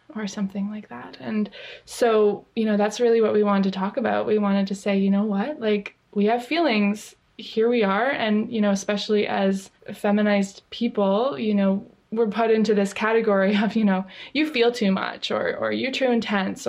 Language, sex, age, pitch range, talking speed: English, female, 20-39, 200-235 Hz, 200 wpm